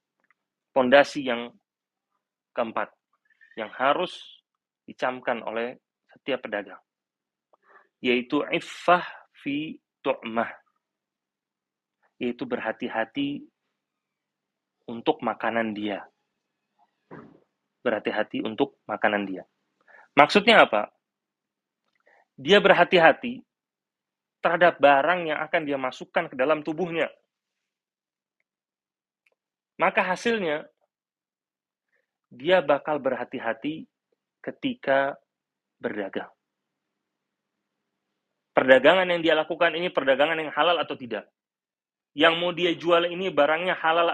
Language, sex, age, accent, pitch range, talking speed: Indonesian, male, 30-49, native, 135-185 Hz, 80 wpm